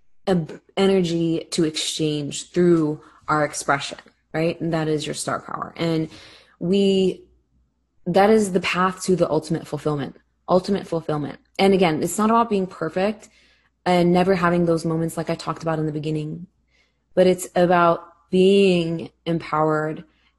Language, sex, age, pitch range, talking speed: English, female, 20-39, 160-185 Hz, 145 wpm